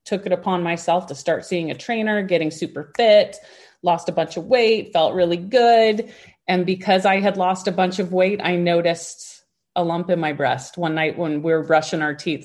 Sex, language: female, English